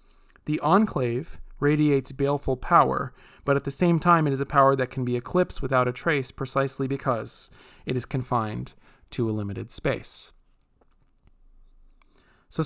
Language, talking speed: English, 145 wpm